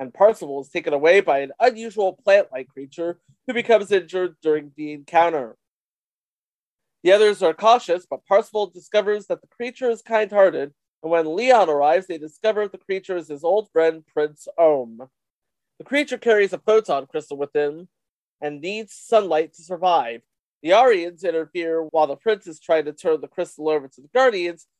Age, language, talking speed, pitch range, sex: 30-49, English, 170 wpm, 145-200 Hz, male